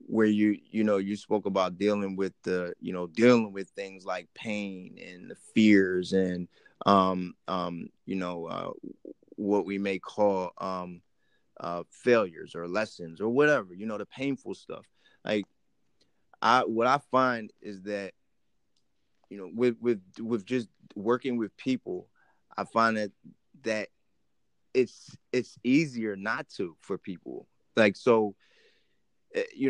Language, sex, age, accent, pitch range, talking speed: English, male, 20-39, American, 95-120 Hz, 145 wpm